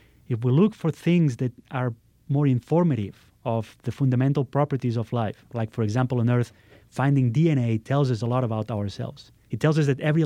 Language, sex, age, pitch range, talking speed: English, male, 30-49, 115-140 Hz, 195 wpm